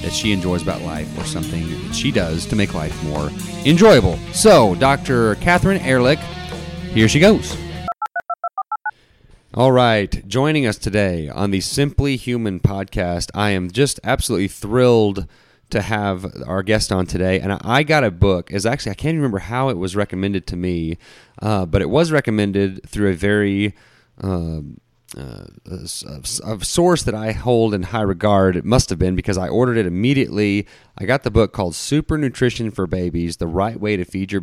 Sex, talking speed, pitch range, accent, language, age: male, 175 wpm, 95-125 Hz, American, English, 30-49